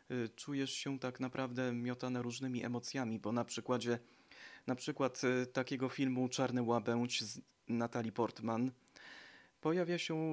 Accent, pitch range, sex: native, 115-130 Hz, male